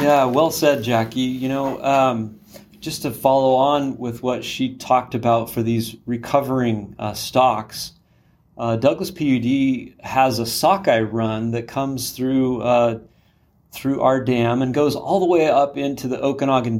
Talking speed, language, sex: 155 wpm, English, male